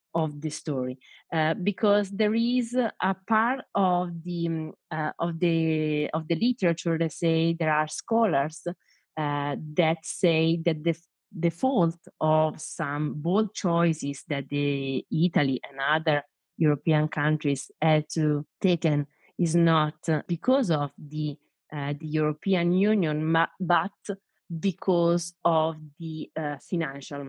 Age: 30-49